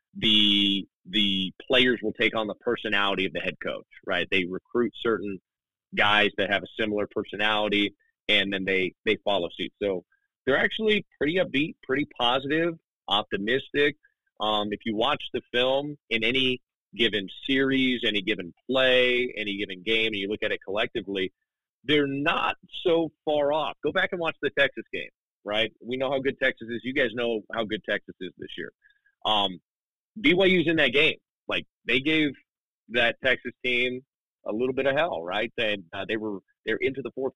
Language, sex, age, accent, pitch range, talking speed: English, male, 30-49, American, 105-145 Hz, 180 wpm